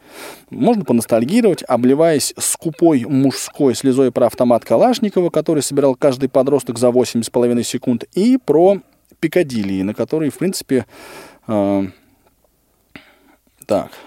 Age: 20-39